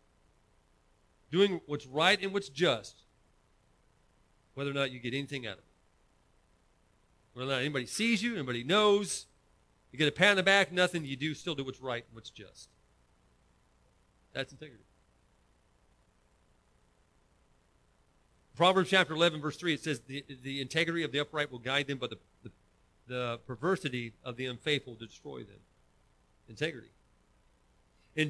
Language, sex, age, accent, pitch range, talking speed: English, male, 40-59, American, 105-170 Hz, 150 wpm